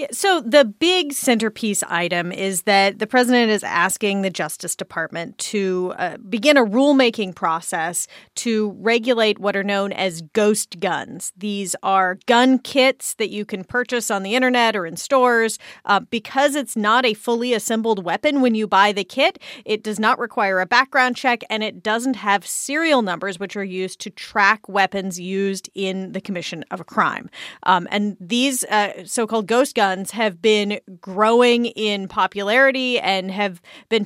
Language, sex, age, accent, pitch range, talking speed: English, female, 30-49, American, 195-245 Hz, 170 wpm